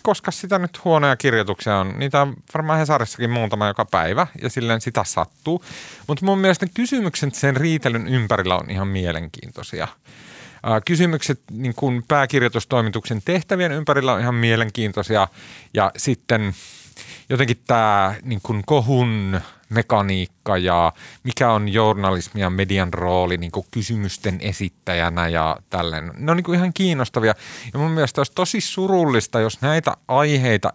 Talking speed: 135 wpm